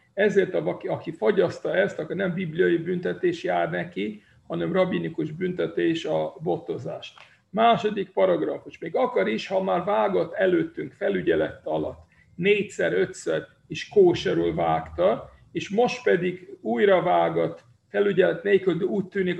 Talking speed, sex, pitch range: 125 wpm, male, 160-205 Hz